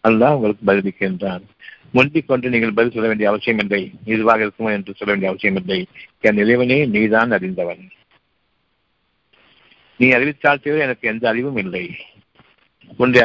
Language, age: Tamil, 50-69